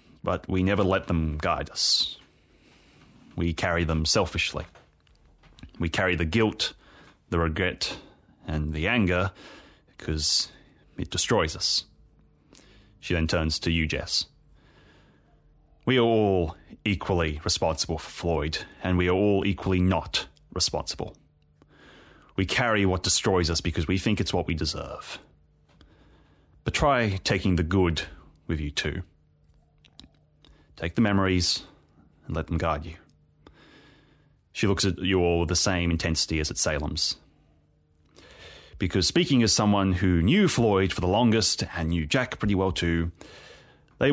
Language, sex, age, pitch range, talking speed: English, male, 30-49, 80-95 Hz, 135 wpm